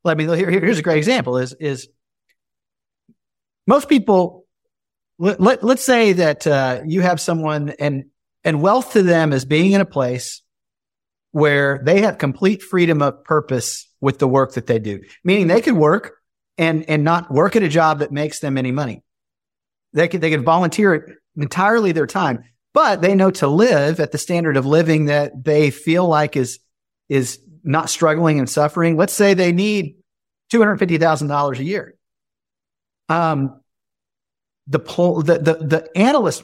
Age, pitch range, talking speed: 50-69, 145-190 Hz, 165 wpm